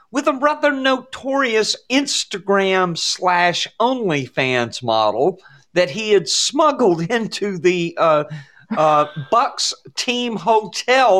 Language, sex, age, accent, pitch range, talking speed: English, male, 50-69, American, 140-195 Hz, 90 wpm